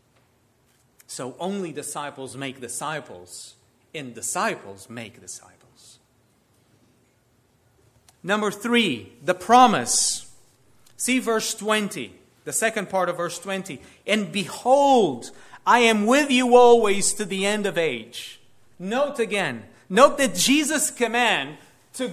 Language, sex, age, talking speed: English, male, 40-59, 110 wpm